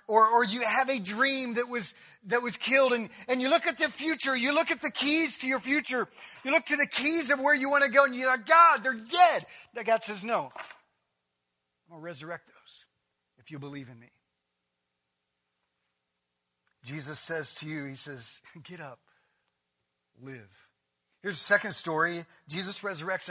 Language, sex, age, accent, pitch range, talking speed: English, male, 40-59, American, 170-250 Hz, 185 wpm